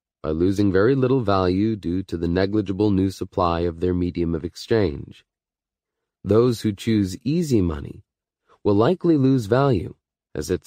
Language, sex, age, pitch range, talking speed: English, male, 30-49, 90-115 Hz, 150 wpm